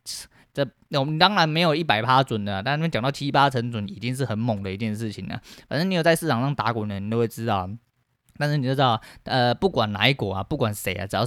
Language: Chinese